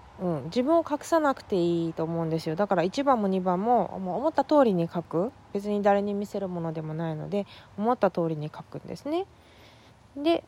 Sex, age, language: female, 20-39, Japanese